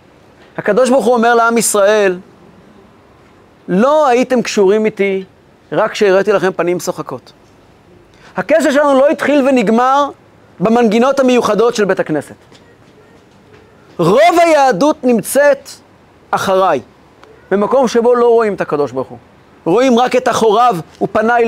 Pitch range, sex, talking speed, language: 195-255 Hz, male, 115 wpm, Hebrew